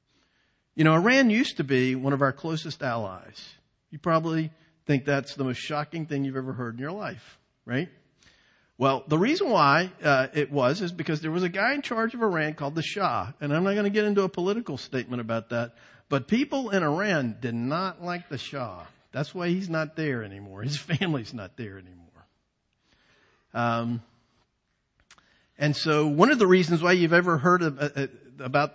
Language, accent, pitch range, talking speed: English, American, 135-185 Hz, 195 wpm